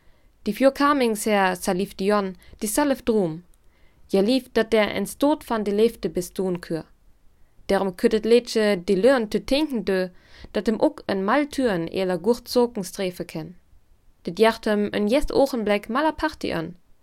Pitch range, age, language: 190-245 Hz, 20-39, German